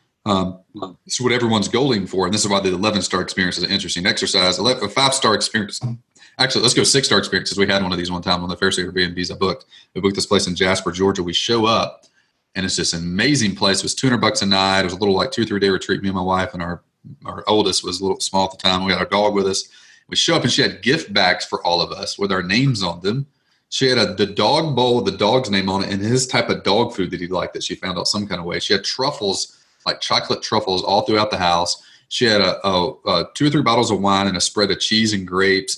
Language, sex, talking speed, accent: English, male, 280 wpm, American